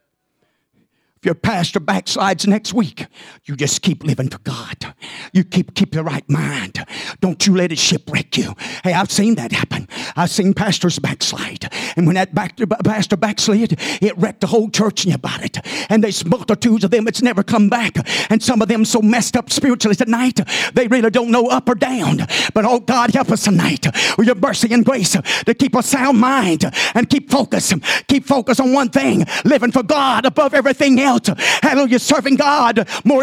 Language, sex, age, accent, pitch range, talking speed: English, male, 50-69, American, 220-300 Hz, 200 wpm